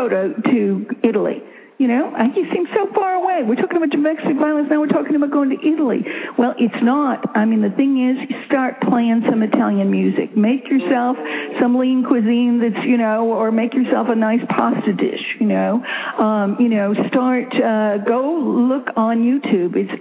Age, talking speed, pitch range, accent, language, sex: 50-69, 190 wpm, 205-270 Hz, American, English, female